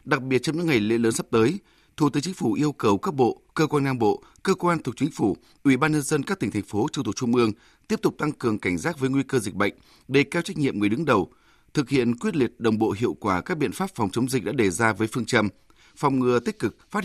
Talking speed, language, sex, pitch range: 285 wpm, Vietnamese, male, 110-155 Hz